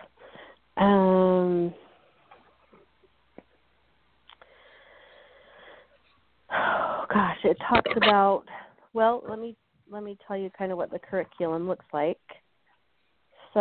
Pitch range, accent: 170-195 Hz, American